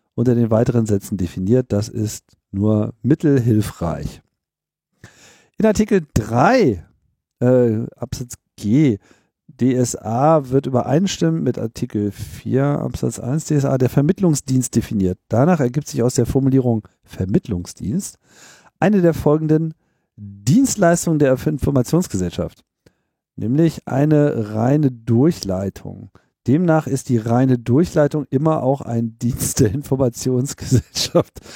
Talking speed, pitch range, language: 105 wpm, 110-145 Hz, German